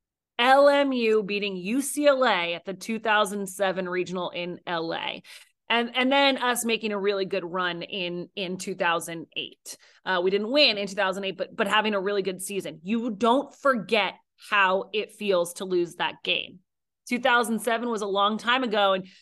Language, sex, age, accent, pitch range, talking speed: English, female, 30-49, American, 200-245 Hz, 160 wpm